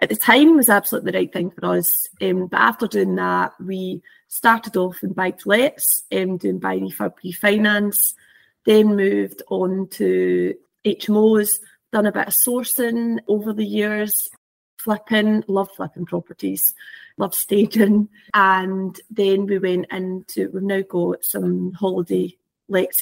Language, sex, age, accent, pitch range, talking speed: English, female, 30-49, British, 180-215 Hz, 150 wpm